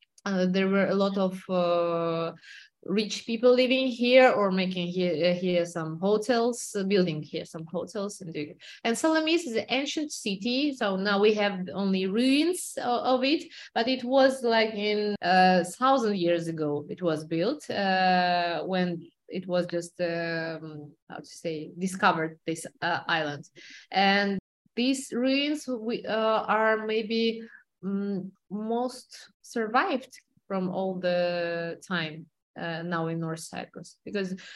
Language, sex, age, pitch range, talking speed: English, female, 20-39, 170-225 Hz, 145 wpm